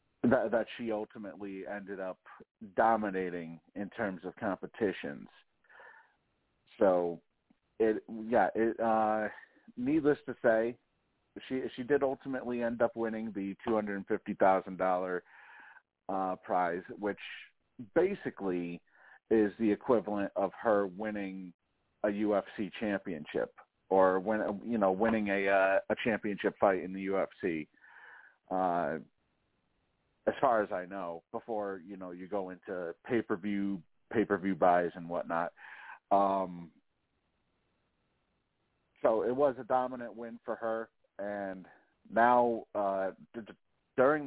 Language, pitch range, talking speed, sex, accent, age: English, 95-115 Hz, 115 wpm, male, American, 50-69